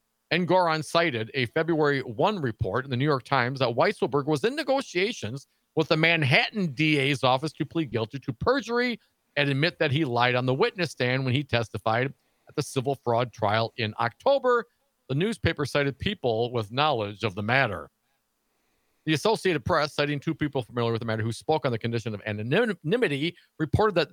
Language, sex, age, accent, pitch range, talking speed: English, male, 50-69, American, 120-165 Hz, 185 wpm